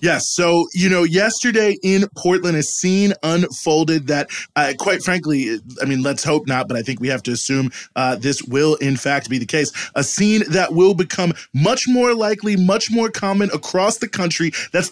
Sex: male